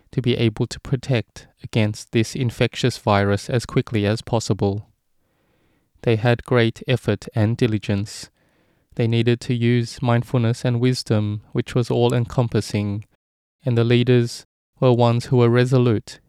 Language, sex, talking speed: English, male, 135 wpm